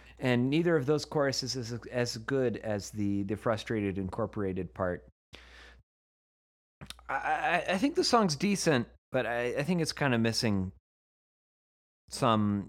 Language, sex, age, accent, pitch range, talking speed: English, male, 30-49, American, 100-130 Hz, 135 wpm